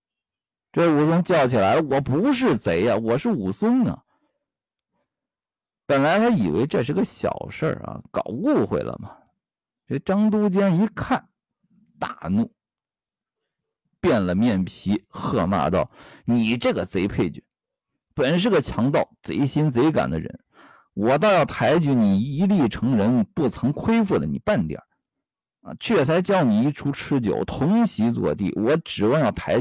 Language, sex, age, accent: Chinese, male, 50-69, native